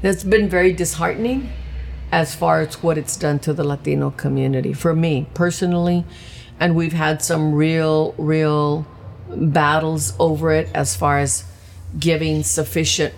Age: 50-69